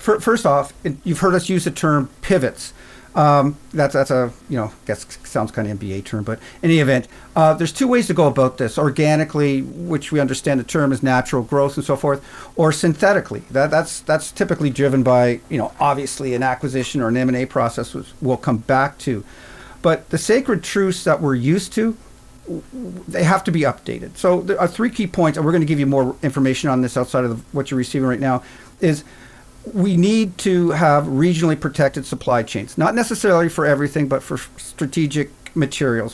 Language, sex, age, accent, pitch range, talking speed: English, male, 50-69, American, 125-160 Hz, 205 wpm